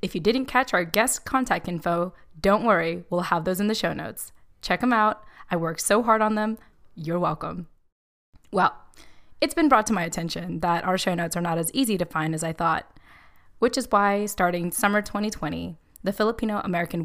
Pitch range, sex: 175-215 Hz, female